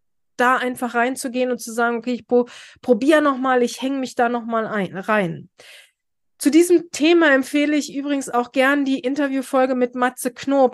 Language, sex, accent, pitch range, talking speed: German, female, German, 240-280 Hz, 160 wpm